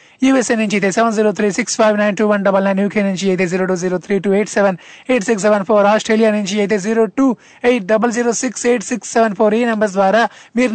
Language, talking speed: Telugu, 165 wpm